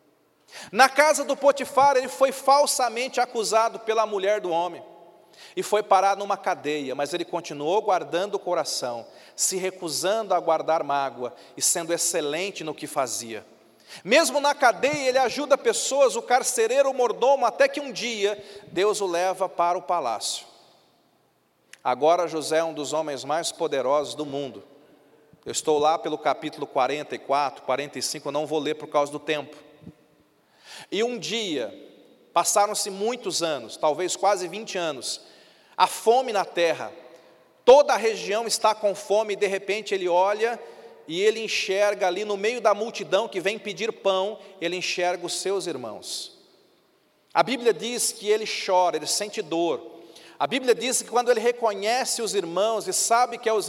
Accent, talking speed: Brazilian, 160 wpm